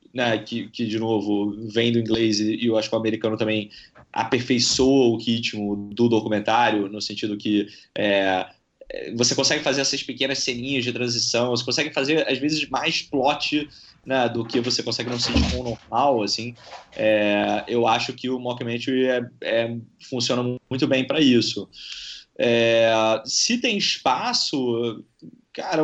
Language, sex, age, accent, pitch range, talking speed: Portuguese, male, 20-39, Brazilian, 115-150 Hz, 155 wpm